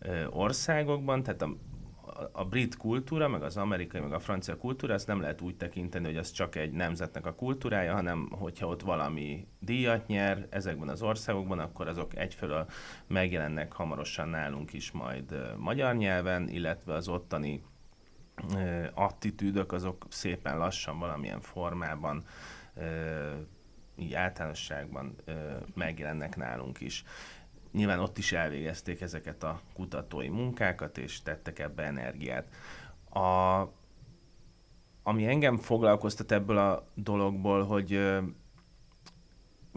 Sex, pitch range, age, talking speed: male, 80-100 Hz, 30-49, 125 wpm